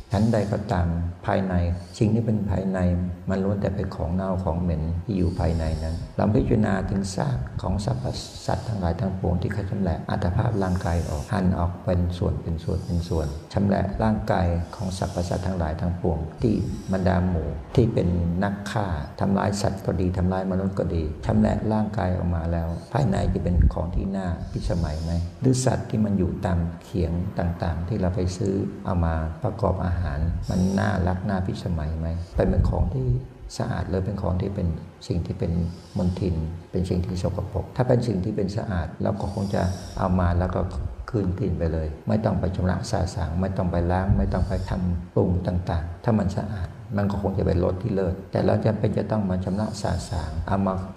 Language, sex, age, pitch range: Thai, male, 60-79, 90-100 Hz